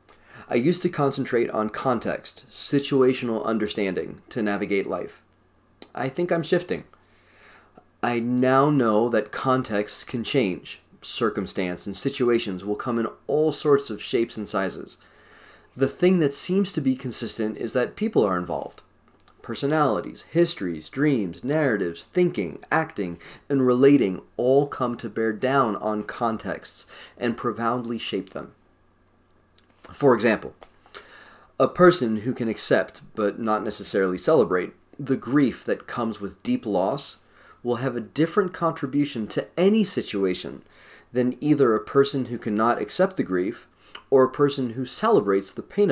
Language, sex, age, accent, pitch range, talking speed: English, male, 30-49, American, 105-140 Hz, 140 wpm